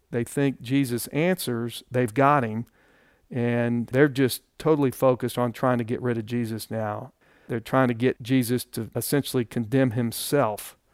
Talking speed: 160 wpm